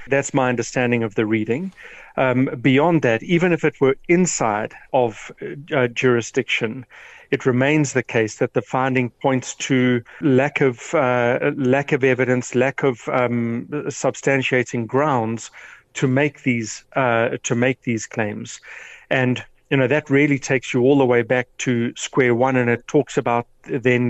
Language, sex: English, male